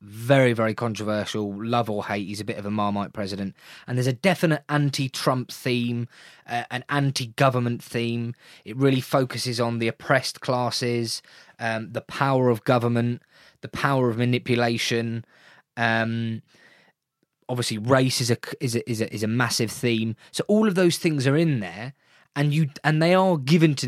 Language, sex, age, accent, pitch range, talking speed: English, male, 20-39, British, 115-145 Hz, 170 wpm